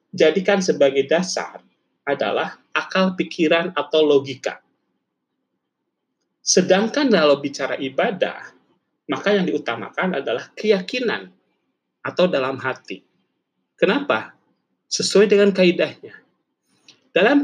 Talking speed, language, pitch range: 85 wpm, Indonesian, 155-205 Hz